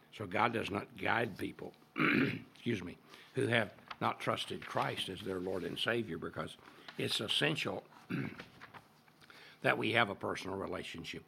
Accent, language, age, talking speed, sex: American, English, 60-79, 145 wpm, male